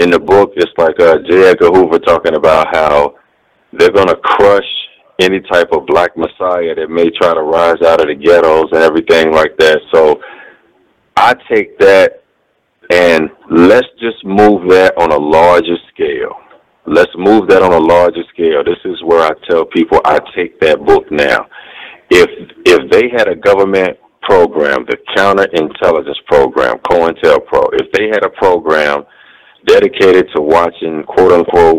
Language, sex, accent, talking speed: English, male, American, 160 wpm